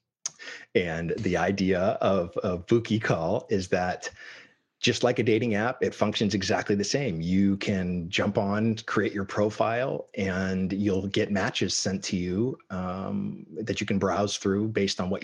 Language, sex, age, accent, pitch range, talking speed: English, male, 30-49, American, 90-110 Hz, 170 wpm